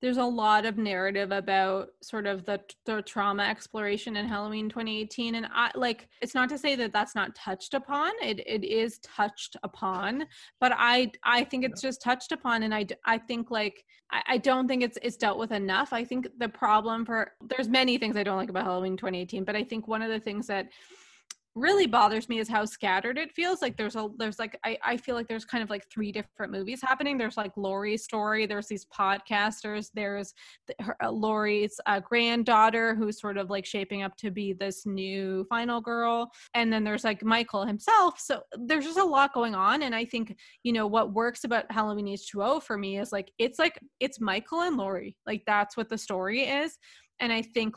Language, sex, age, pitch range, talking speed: English, female, 20-39, 205-240 Hz, 210 wpm